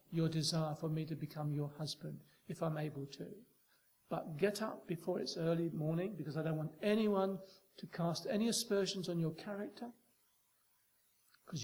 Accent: British